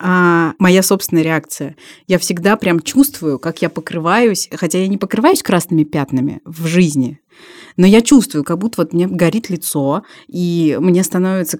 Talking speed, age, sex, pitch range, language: 160 wpm, 20-39, female, 155-190 Hz, Russian